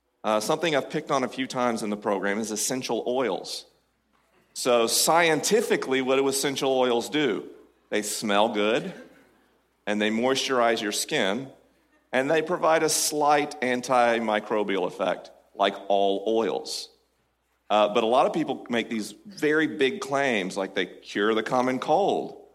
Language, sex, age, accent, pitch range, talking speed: English, male, 40-59, American, 110-150 Hz, 150 wpm